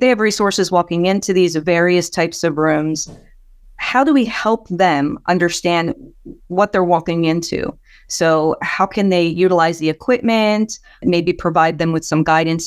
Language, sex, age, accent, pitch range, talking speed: English, female, 40-59, American, 165-195 Hz, 155 wpm